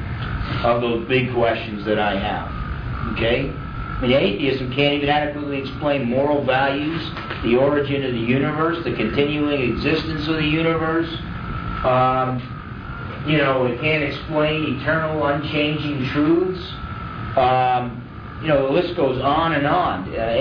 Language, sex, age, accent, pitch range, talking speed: English, male, 50-69, American, 120-145 Hz, 140 wpm